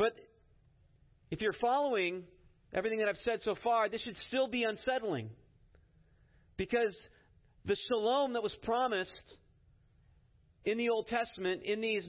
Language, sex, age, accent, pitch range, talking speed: English, male, 40-59, American, 155-220 Hz, 135 wpm